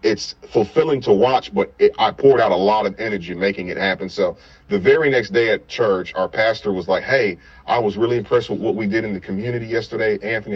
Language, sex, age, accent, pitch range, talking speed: English, male, 40-59, American, 90-120 Hz, 225 wpm